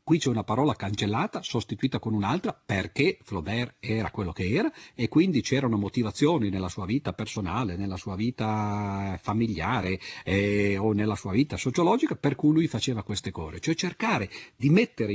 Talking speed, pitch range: 165 wpm, 105-150 Hz